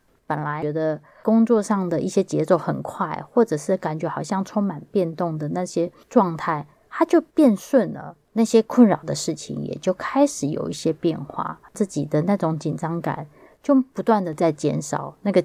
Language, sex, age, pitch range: Chinese, female, 20-39, 165-215 Hz